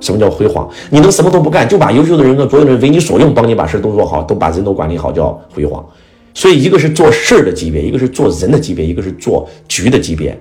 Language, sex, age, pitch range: Chinese, male, 30-49, 80-125 Hz